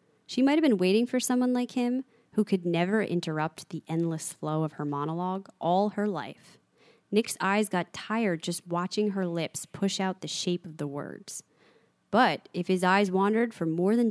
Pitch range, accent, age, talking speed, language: 170-230 Hz, American, 20-39, 190 wpm, English